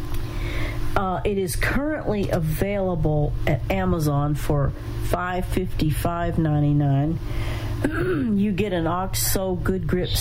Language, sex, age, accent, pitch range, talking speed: English, female, 50-69, American, 115-160 Hz, 110 wpm